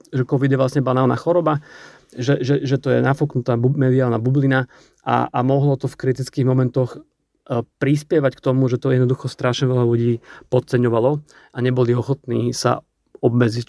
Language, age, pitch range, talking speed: Slovak, 40-59, 125-140 Hz, 160 wpm